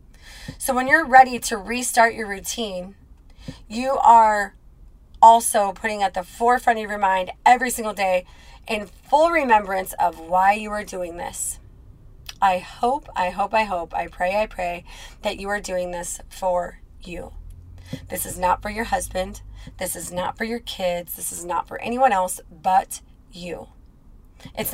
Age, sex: 30-49, female